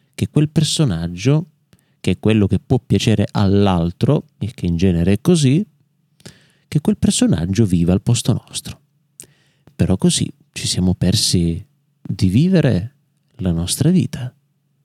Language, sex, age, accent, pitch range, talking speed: Italian, male, 30-49, native, 110-150 Hz, 135 wpm